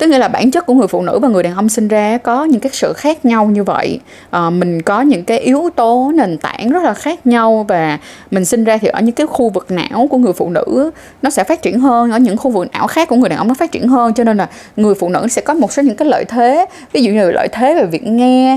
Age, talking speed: 20-39, 295 wpm